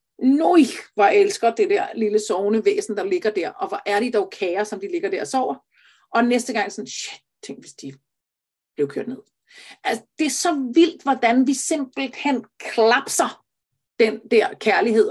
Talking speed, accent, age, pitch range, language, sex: 190 wpm, native, 40-59, 210-295 Hz, Danish, female